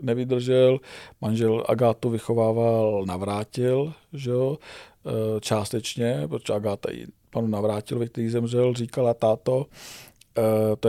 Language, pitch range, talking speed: Czech, 110-125 Hz, 95 wpm